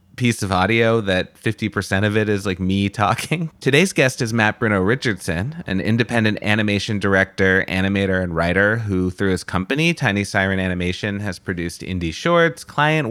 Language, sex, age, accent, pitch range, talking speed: English, male, 30-49, American, 100-130 Hz, 165 wpm